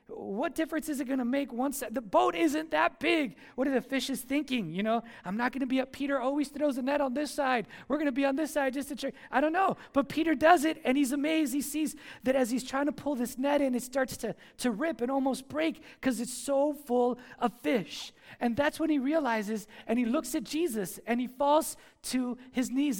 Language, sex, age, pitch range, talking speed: English, male, 20-39, 235-290 Hz, 250 wpm